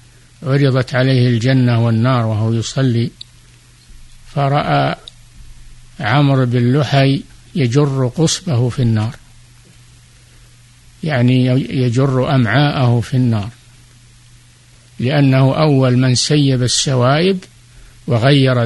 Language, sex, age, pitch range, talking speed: Arabic, male, 50-69, 120-135 Hz, 75 wpm